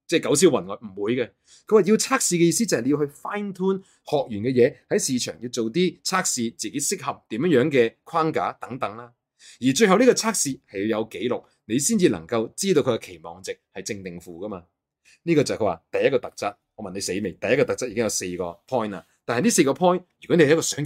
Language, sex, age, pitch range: Chinese, male, 30-49, 120-190 Hz